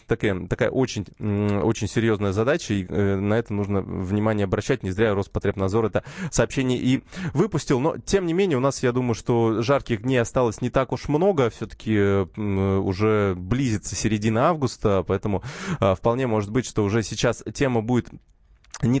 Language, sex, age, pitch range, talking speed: Russian, male, 20-39, 105-130 Hz, 160 wpm